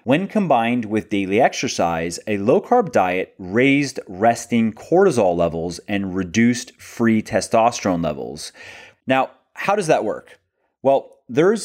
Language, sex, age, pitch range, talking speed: English, male, 30-49, 95-130 Hz, 130 wpm